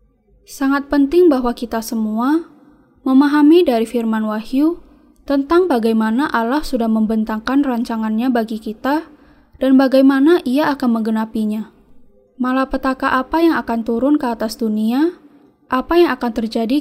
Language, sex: Indonesian, female